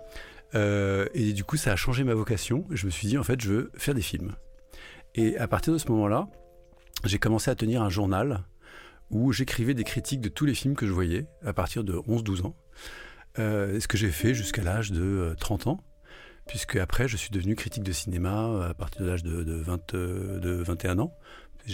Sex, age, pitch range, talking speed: male, 40-59, 95-120 Hz, 210 wpm